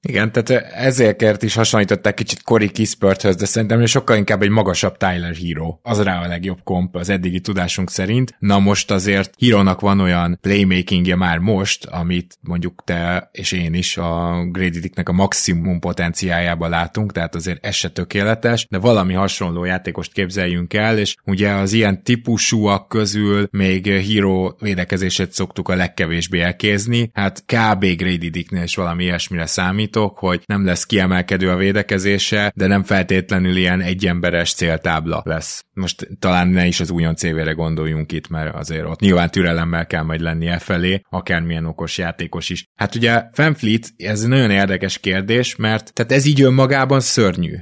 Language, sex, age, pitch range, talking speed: Hungarian, male, 20-39, 90-110 Hz, 160 wpm